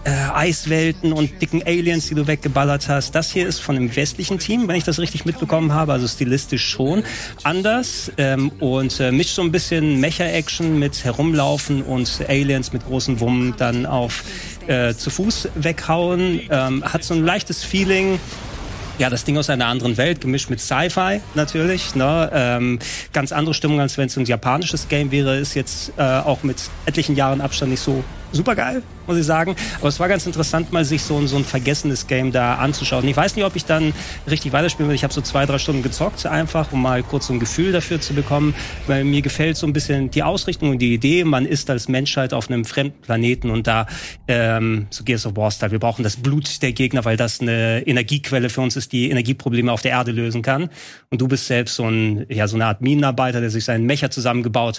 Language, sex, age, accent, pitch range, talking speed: German, male, 40-59, German, 125-155 Hz, 210 wpm